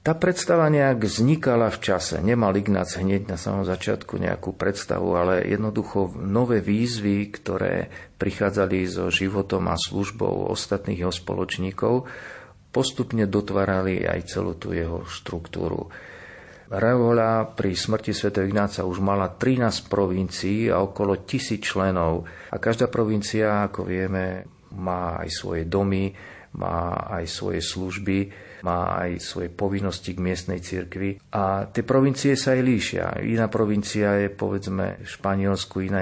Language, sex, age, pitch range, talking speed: Slovak, male, 40-59, 90-110 Hz, 135 wpm